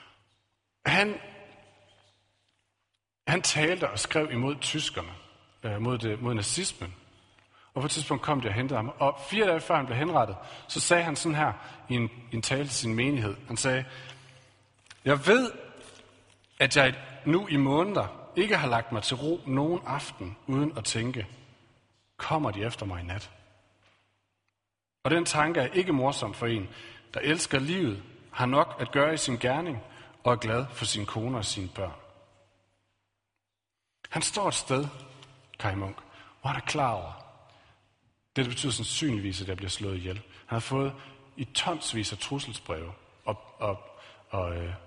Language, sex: Danish, male